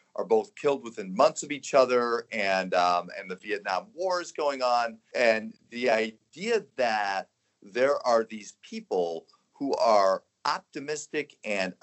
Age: 40-59